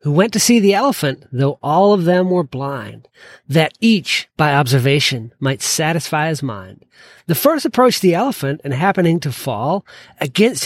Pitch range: 140-205 Hz